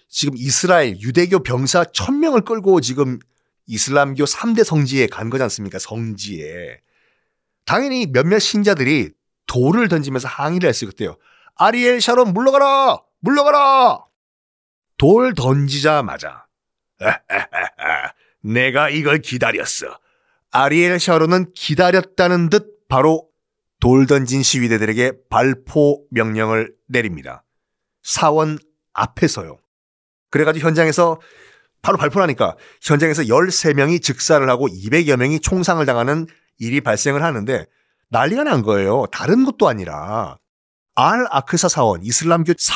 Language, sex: Korean, male